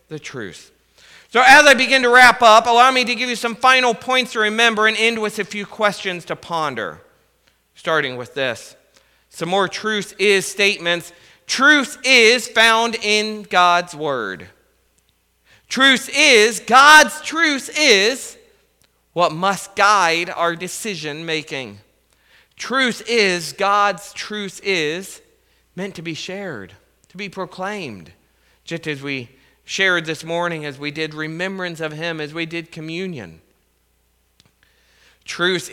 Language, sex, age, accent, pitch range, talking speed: English, male, 40-59, American, 155-220 Hz, 135 wpm